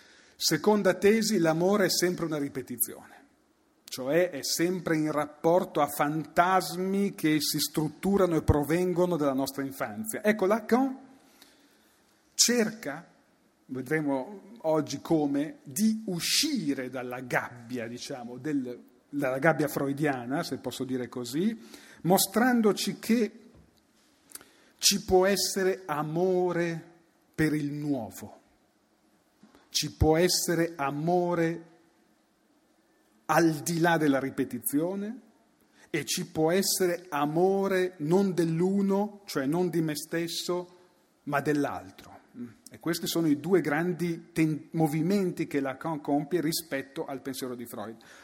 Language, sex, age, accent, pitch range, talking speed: Italian, male, 40-59, native, 145-190 Hz, 110 wpm